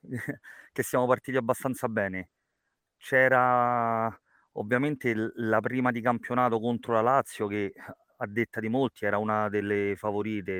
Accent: native